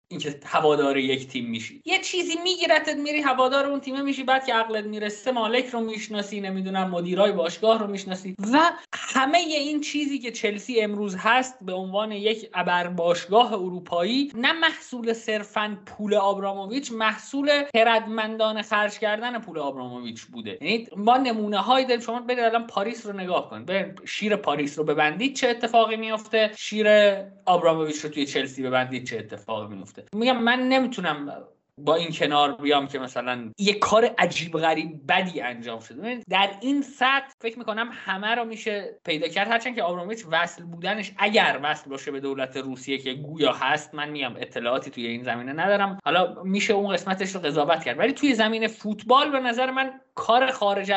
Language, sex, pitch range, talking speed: Persian, male, 160-235 Hz, 165 wpm